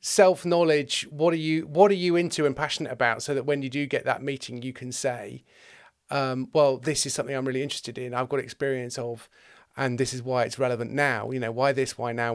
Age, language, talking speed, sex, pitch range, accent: 40-59, English, 235 wpm, male, 140-190 Hz, British